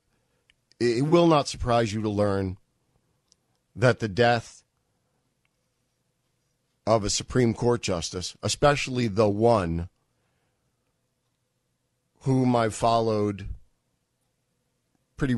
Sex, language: male, English